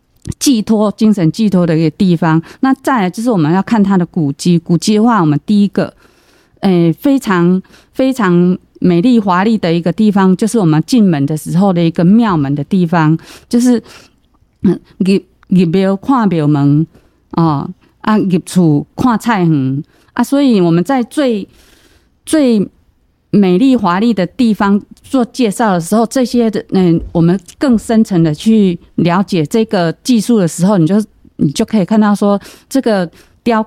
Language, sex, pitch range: Chinese, female, 175-230 Hz